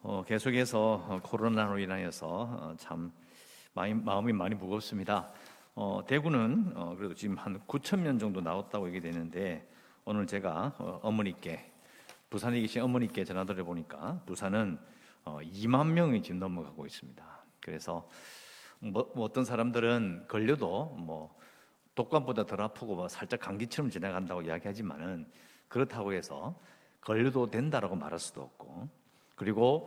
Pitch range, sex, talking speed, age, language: 90-120 Hz, male, 115 wpm, 50-69, English